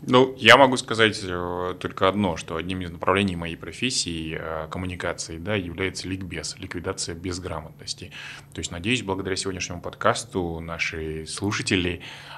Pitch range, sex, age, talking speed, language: 85-100 Hz, male, 20-39, 125 wpm, Russian